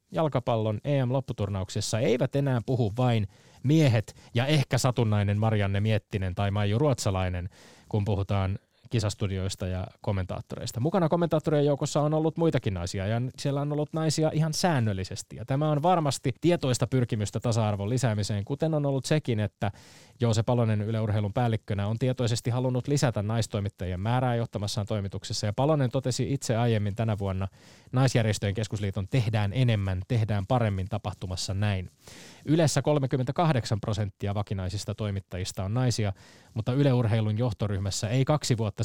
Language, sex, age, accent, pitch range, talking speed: Finnish, male, 20-39, native, 105-130 Hz, 135 wpm